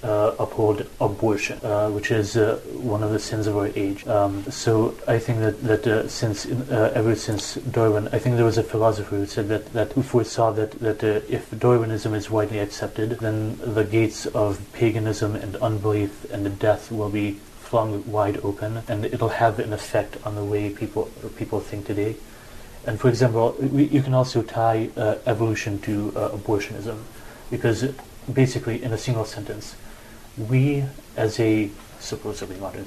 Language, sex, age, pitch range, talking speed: English, male, 30-49, 105-115 Hz, 180 wpm